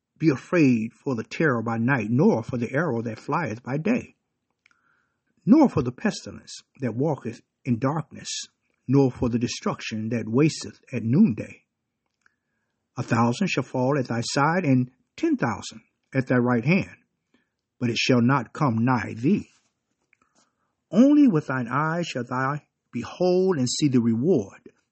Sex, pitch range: male, 120-155 Hz